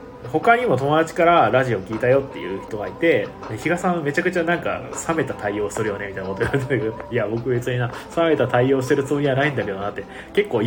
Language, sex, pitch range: Japanese, male, 110-135 Hz